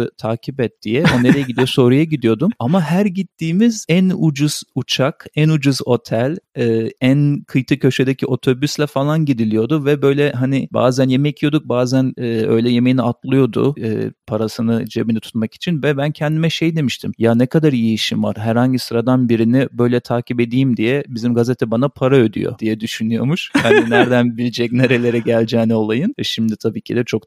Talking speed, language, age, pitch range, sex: 165 wpm, Turkish, 40-59, 115-150 Hz, male